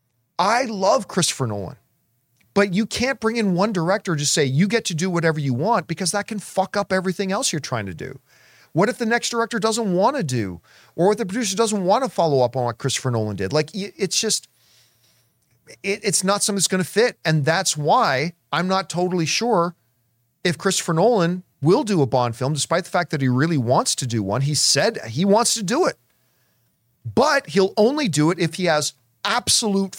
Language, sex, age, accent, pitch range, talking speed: English, male, 40-59, American, 135-200 Hz, 210 wpm